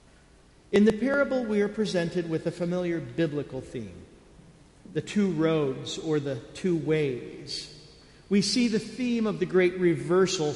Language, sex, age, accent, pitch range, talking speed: English, male, 50-69, American, 150-190 Hz, 150 wpm